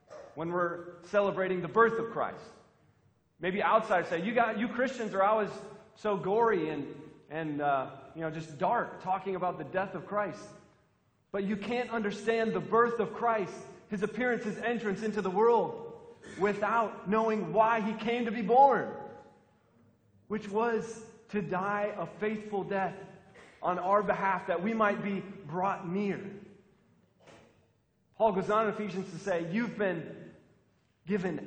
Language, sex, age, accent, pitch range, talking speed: English, male, 30-49, American, 170-215 Hz, 155 wpm